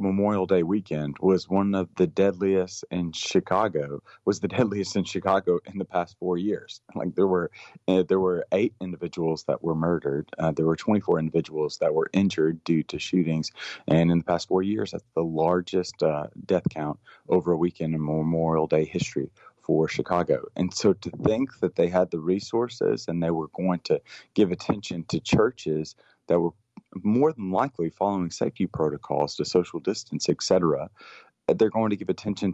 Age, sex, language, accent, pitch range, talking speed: 30-49, male, English, American, 80-95 Hz, 185 wpm